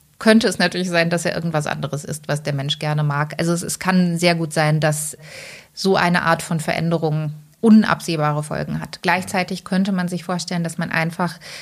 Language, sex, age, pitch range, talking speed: English, female, 30-49, 160-185 Hz, 195 wpm